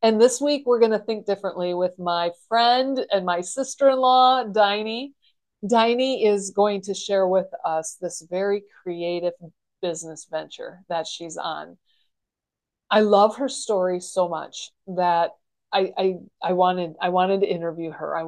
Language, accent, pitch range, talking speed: English, American, 175-225 Hz, 155 wpm